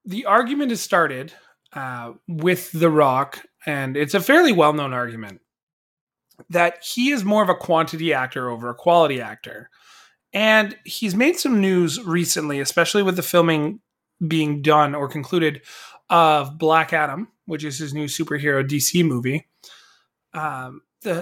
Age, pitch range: 30-49, 150-190 Hz